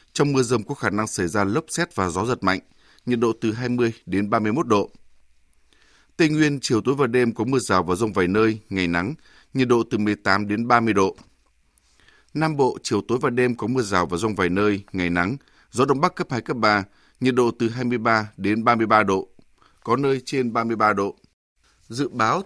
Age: 20-39